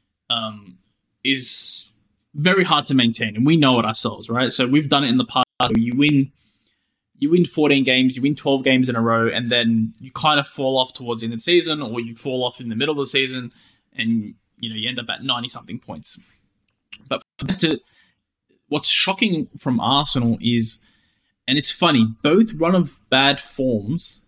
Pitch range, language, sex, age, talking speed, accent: 115-140 Hz, English, male, 20-39, 200 wpm, Australian